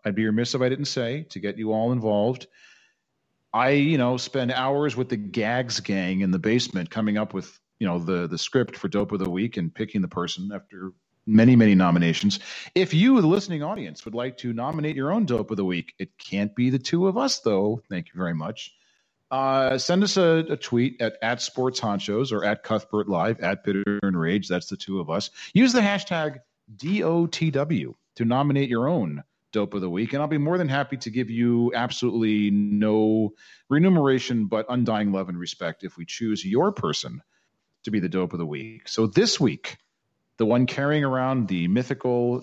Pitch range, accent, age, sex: 100-140 Hz, American, 40-59, male